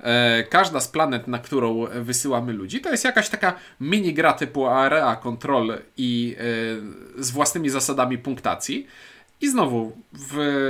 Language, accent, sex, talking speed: Polish, native, male, 135 wpm